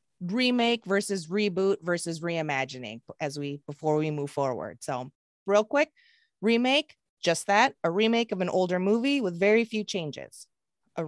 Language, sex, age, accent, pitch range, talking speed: English, female, 30-49, American, 175-245 Hz, 150 wpm